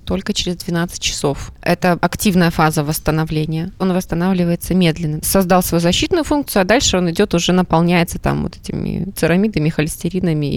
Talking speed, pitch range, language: 150 wpm, 160-195 Hz, Russian